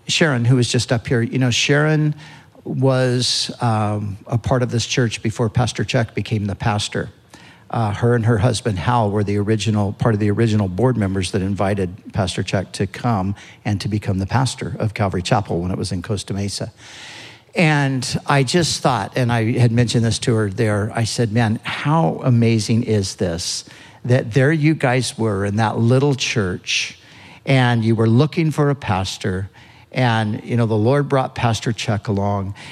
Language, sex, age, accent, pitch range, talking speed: English, male, 50-69, American, 105-130 Hz, 185 wpm